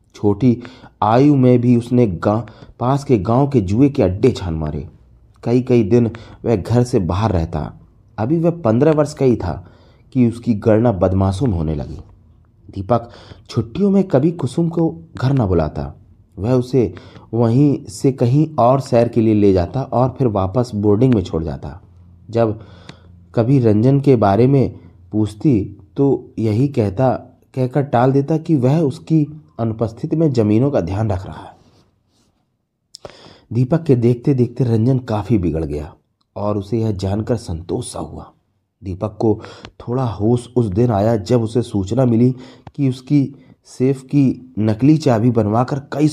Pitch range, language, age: 100-130 Hz, Hindi, 30-49